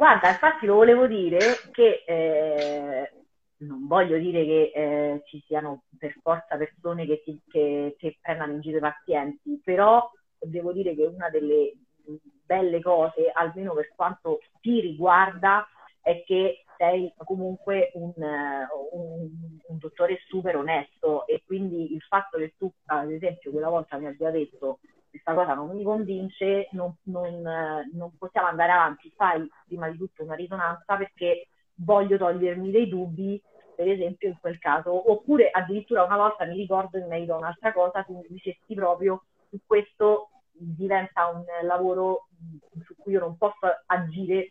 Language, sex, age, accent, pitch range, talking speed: Italian, female, 30-49, native, 160-195 Hz, 150 wpm